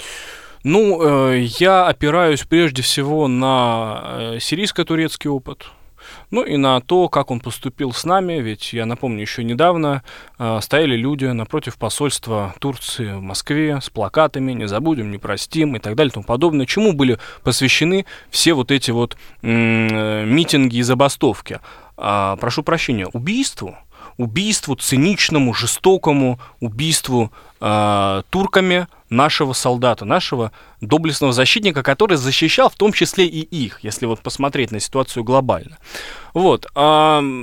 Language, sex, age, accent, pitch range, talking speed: Russian, male, 20-39, native, 125-175 Hz, 125 wpm